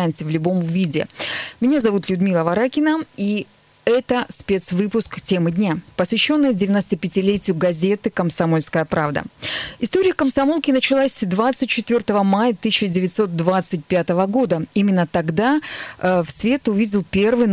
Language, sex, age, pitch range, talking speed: Russian, female, 20-39, 180-225 Hz, 105 wpm